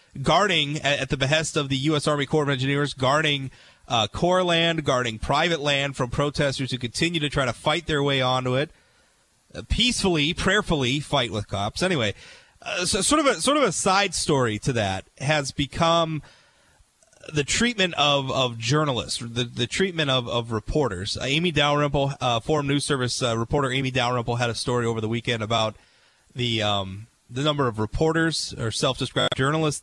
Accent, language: American, English